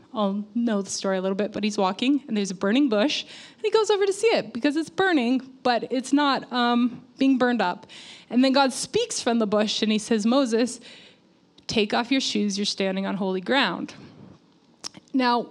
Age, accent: 20-39, American